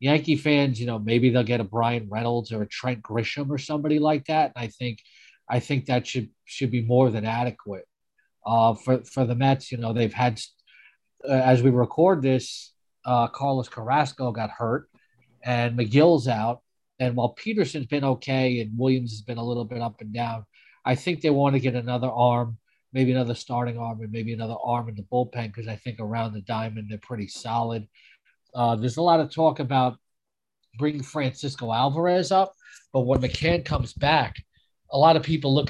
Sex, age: male, 40-59